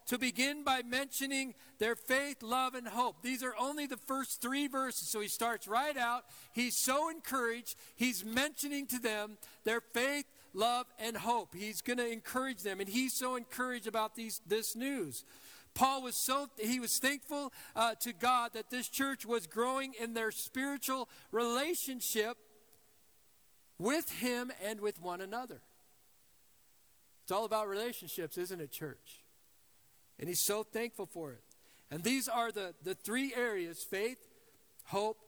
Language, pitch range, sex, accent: English, 195-255 Hz, male, American